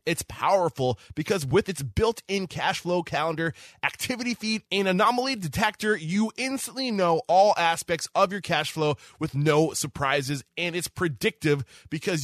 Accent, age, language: American, 20-39, English